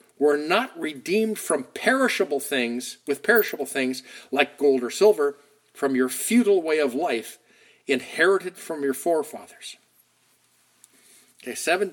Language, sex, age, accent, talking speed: English, male, 50-69, American, 125 wpm